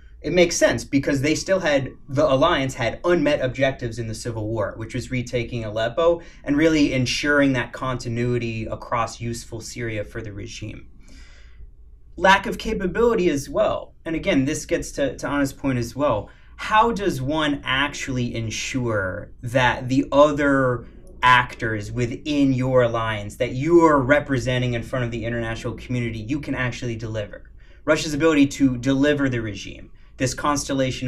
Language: English